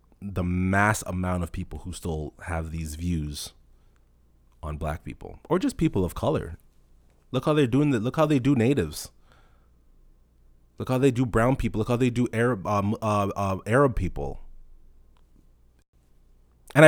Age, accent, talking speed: 30-49, American, 160 wpm